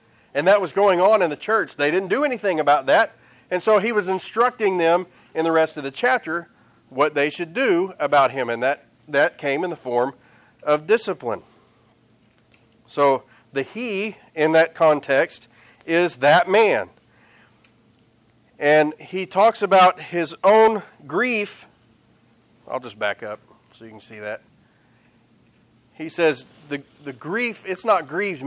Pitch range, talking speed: 120-185 Hz, 155 wpm